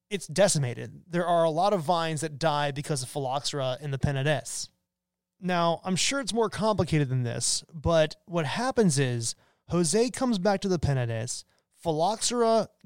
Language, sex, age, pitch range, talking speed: English, male, 20-39, 145-205 Hz, 165 wpm